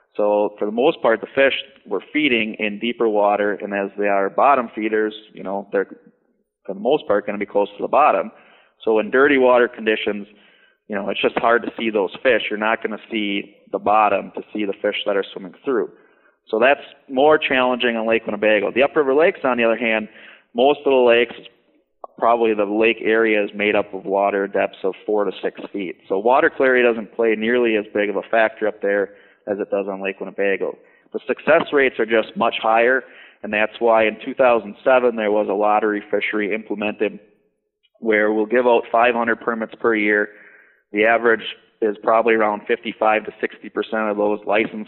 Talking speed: 205 wpm